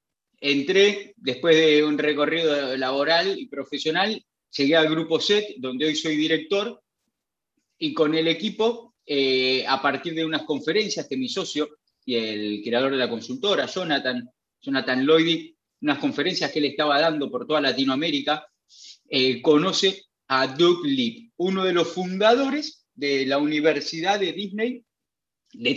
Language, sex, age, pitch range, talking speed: Spanish, male, 30-49, 130-185 Hz, 145 wpm